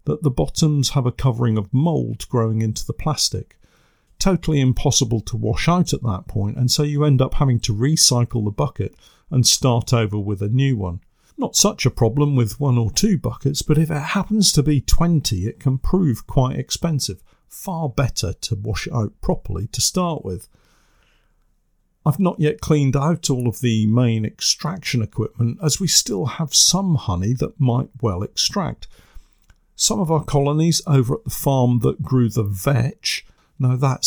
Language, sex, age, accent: English, male, 50-69, British